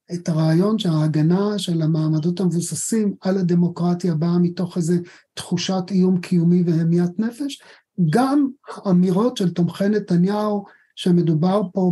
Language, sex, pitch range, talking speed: Hebrew, male, 165-205 Hz, 115 wpm